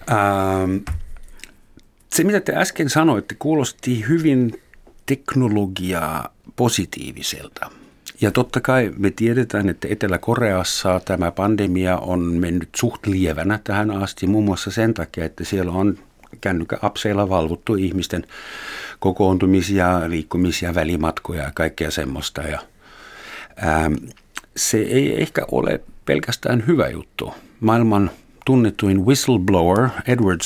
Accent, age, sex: native, 60-79, male